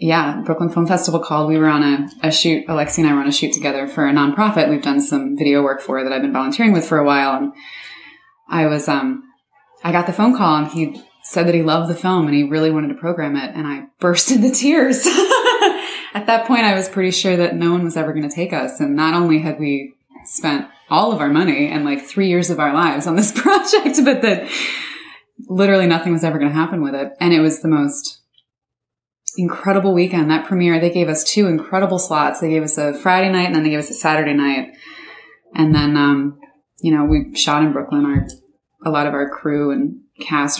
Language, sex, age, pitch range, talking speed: English, female, 20-39, 145-205 Hz, 235 wpm